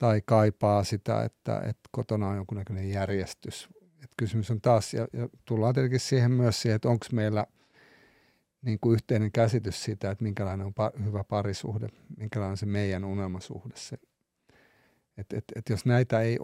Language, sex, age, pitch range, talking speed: Finnish, male, 50-69, 100-120 Hz, 155 wpm